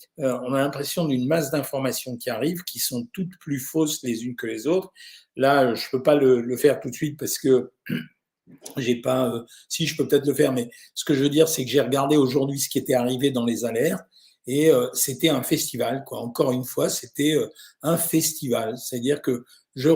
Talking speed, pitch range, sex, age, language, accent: 230 wpm, 130-165 Hz, male, 50-69, French, French